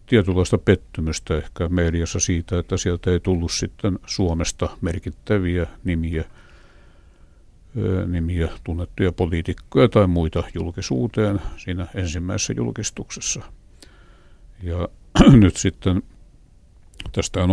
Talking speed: 90 wpm